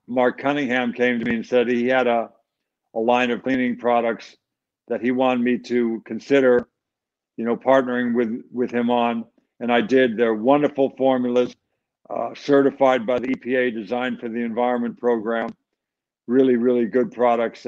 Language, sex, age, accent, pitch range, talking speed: English, male, 60-79, American, 115-130 Hz, 165 wpm